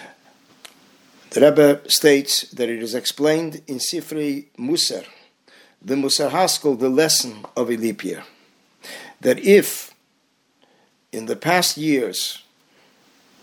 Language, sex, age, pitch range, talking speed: English, male, 50-69, 130-160 Hz, 105 wpm